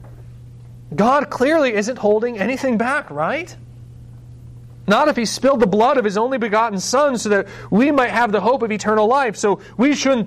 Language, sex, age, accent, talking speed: English, male, 40-59, American, 180 wpm